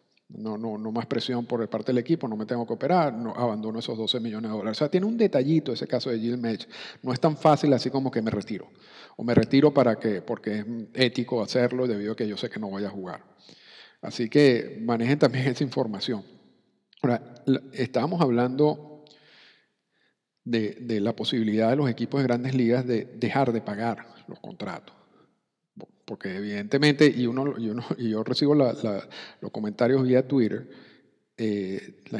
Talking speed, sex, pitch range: 190 wpm, male, 110-135 Hz